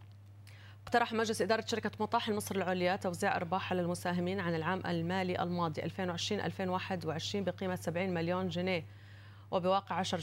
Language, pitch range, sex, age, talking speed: Arabic, 170-195 Hz, female, 30-49, 125 wpm